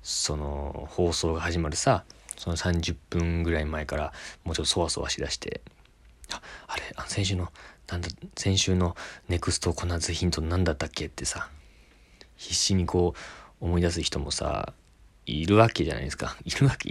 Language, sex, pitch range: Japanese, male, 80-105 Hz